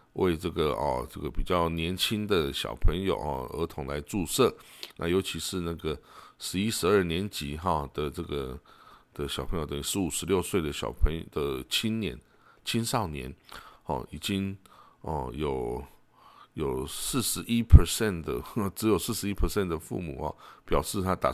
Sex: male